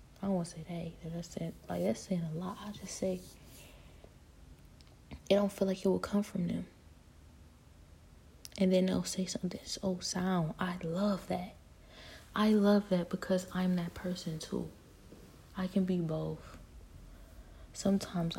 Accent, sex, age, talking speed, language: American, female, 20-39, 155 wpm, English